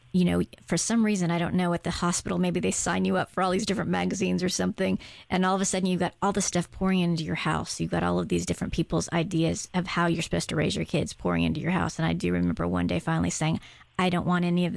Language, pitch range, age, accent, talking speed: English, 150-185 Hz, 40-59, American, 285 wpm